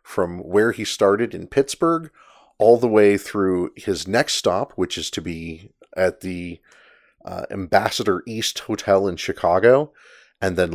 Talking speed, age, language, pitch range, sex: 150 wpm, 30-49, English, 95-115 Hz, male